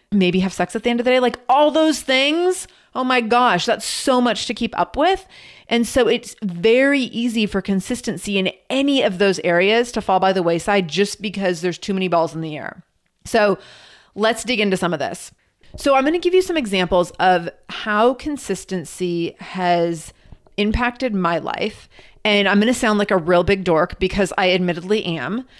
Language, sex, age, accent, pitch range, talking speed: English, female, 30-49, American, 175-230 Hz, 200 wpm